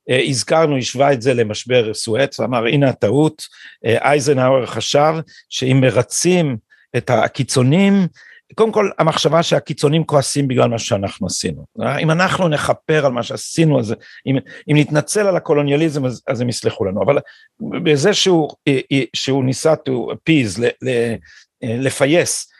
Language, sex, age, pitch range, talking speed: Hebrew, male, 50-69, 130-165 Hz, 125 wpm